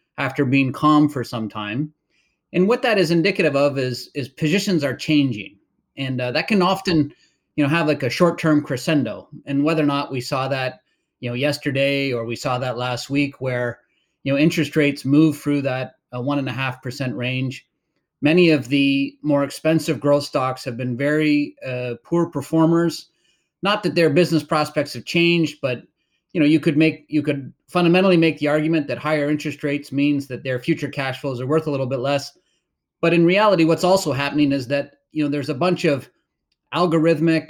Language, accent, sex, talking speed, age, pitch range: English, American, male, 195 wpm, 30-49, 135-160 Hz